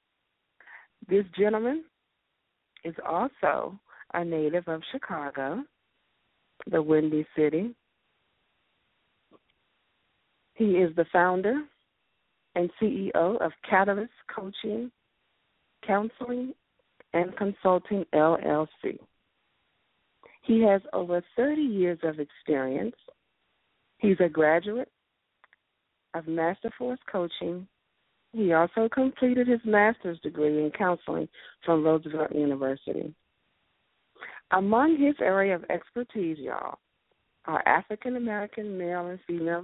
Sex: female